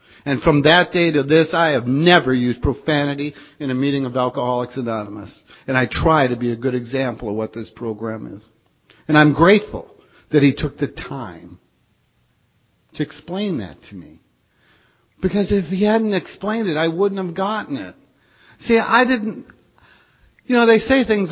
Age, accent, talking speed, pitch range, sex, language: 50-69, American, 175 wpm, 145-200 Hz, male, English